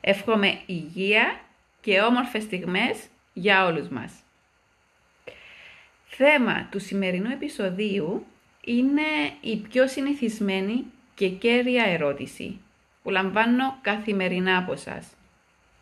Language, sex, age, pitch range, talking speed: Greek, female, 30-49, 185-235 Hz, 90 wpm